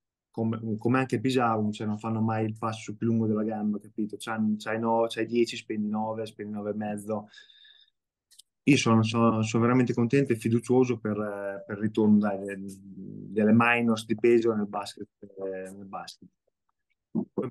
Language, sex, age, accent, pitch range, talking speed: Italian, male, 20-39, native, 105-115 Hz, 145 wpm